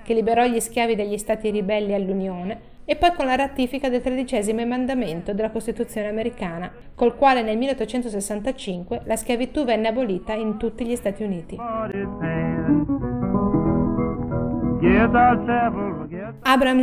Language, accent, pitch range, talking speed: Italian, native, 205-255 Hz, 120 wpm